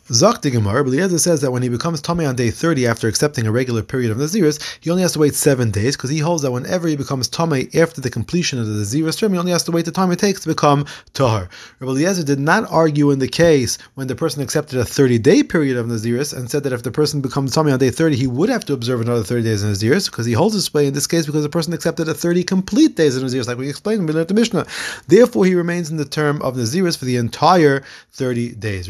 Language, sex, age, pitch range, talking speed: English, male, 30-49, 125-165 Hz, 265 wpm